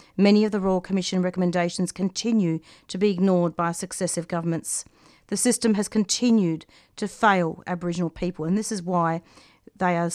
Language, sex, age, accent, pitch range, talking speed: English, female, 40-59, Australian, 170-220 Hz, 160 wpm